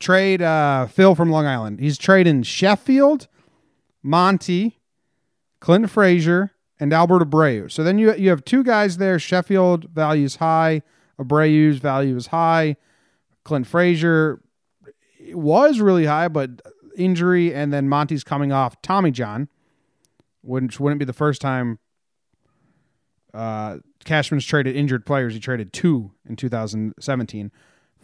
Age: 30-49